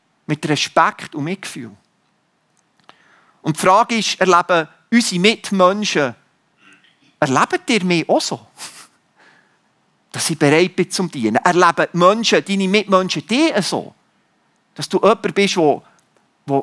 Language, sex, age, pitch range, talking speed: German, male, 40-59, 175-220 Hz, 125 wpm